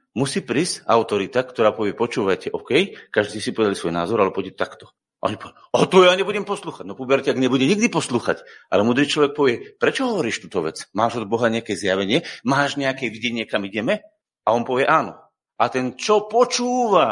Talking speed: 190 wpm